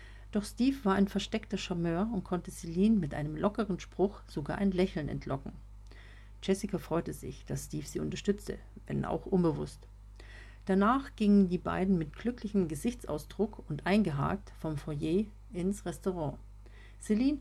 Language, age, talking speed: German, 50-69, 140 wpm